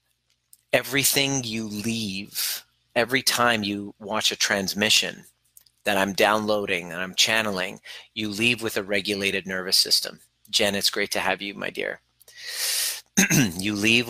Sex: male